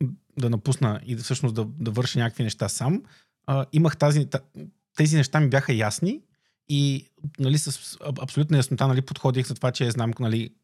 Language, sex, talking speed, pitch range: Bulgarian, male, 180 wpm, 115-140 Hz